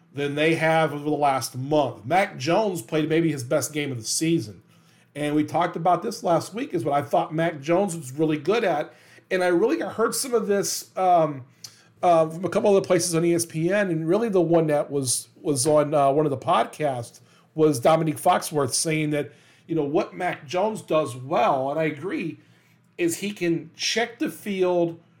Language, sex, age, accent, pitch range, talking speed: English, male, 40-59, American, 155-185 Hz, 200 wpm